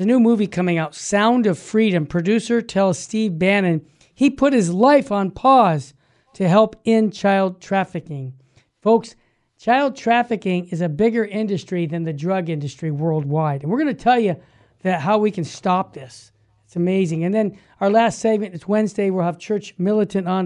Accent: American